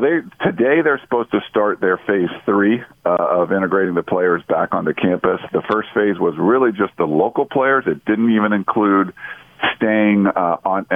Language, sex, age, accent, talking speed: English, male, 50-69, American, 180 wpm